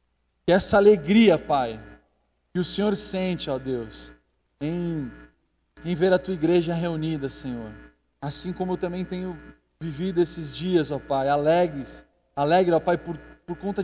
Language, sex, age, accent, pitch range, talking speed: Portuguese, male, 20-39, Brazilian, 140-185 Hz, 150 wpm